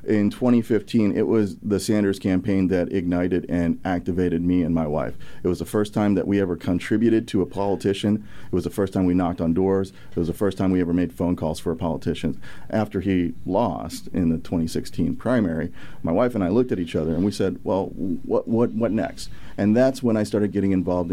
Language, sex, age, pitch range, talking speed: English, male, 40-59, 90-100 Hz, 225 wpm